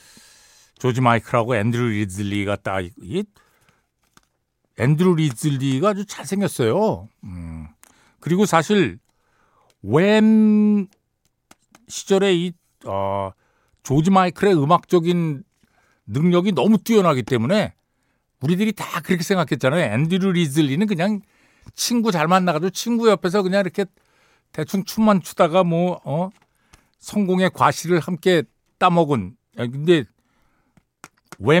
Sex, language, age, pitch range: male, Korean, 60-79, 120-190 Hz